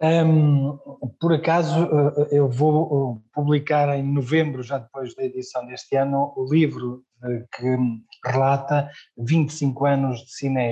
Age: 20-39